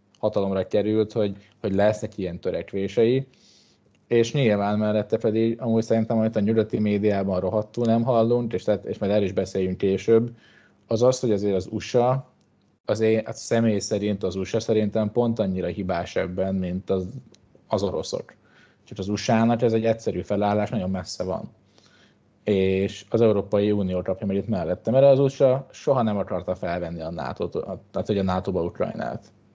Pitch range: 95-110 Hz